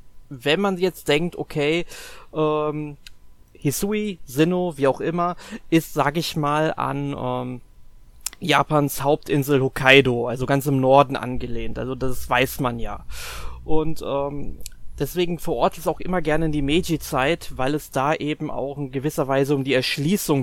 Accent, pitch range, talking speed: German, 135-155 Hz, 155 wpm